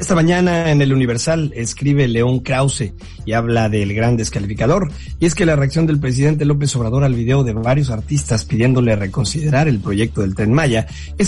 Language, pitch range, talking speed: Spanish, 110-145 Hz, 185 wpm